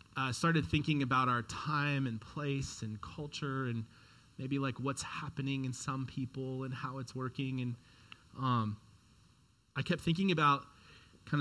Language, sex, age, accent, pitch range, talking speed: English, male, 30-49, American, 115-140 Hz, 155 wpm